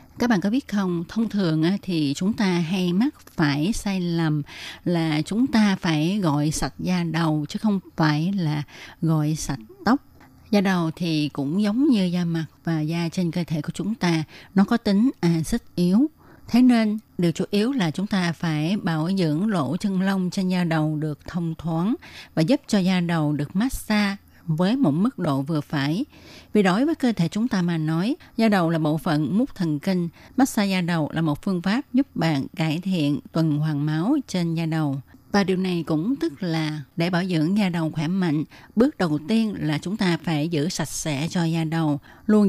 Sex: female